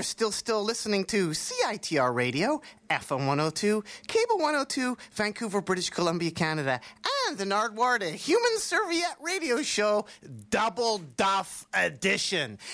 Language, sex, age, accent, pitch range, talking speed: English, male, 30-49, American, 160-270 Hz, 115 wpm